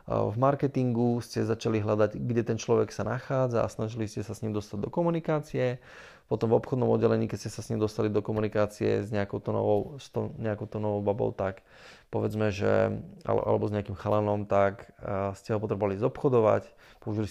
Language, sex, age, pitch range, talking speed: Slovak, male, 20-39, 105-125 Hz, 180 wpm